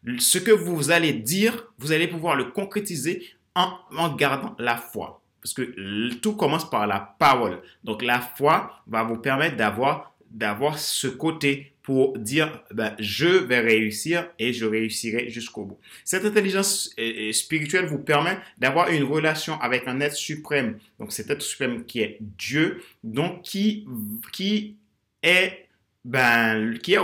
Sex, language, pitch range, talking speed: male, French, 115-160 Hz, 160 wpm